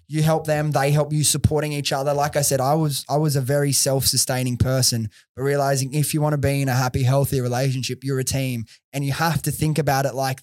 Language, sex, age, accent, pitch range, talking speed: English, male, 20-39, Australian, 130-150 Hz, 255 wpm